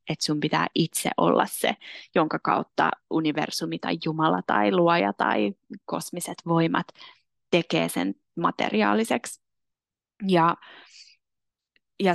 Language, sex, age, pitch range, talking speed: Finnish, female, 20-39, 160-180 Hz, 105 wpm